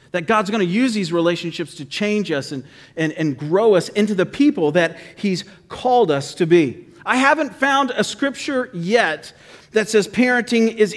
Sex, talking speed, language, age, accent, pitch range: male, 185 wpm, English, 40-59, American, 170-245 Hz